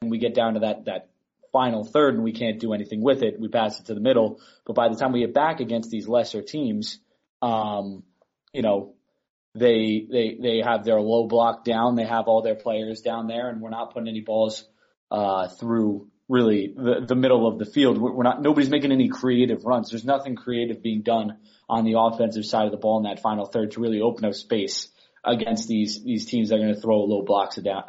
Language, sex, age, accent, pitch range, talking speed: English, male, 20-39, American, 110-125 Hz, 230 wpm